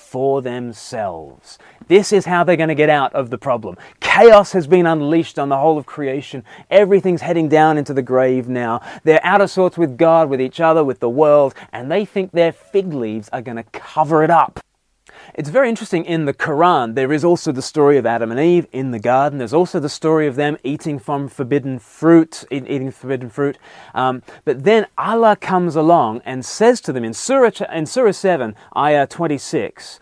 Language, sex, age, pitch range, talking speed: English, male, 30-49, 130-170 Hz, 200 wpm